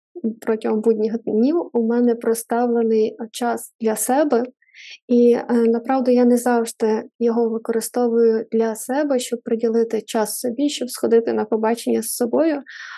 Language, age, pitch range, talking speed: Ukrainian, 20-39, 225-250 Hz, 135 wpm